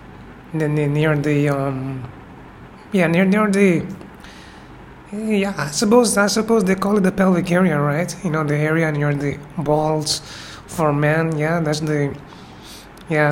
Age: 20-39